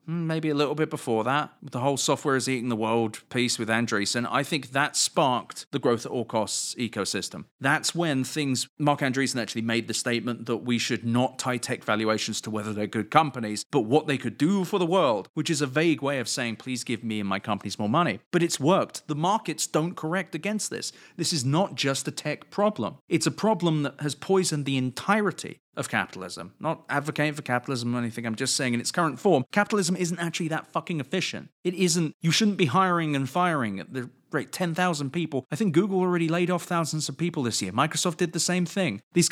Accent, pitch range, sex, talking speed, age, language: British, 120-175 Hz, male, 220 wpm, 30-49, English